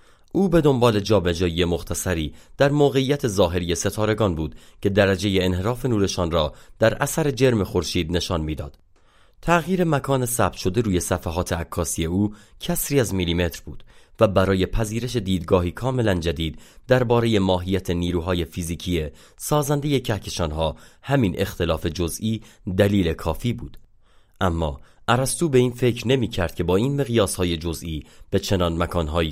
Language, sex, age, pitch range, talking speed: Persian, male, 30-49, 85-120 Hz, 140 wpm